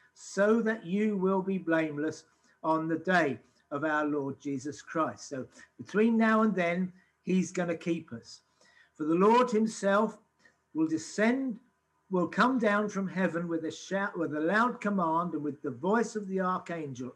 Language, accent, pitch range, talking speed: English, British, 160-210 Hz, 170 wpm